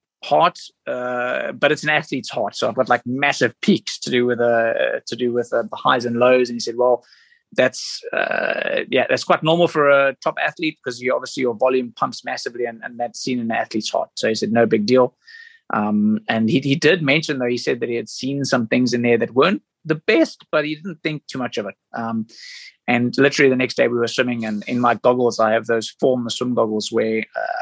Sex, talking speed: male, 240 wpm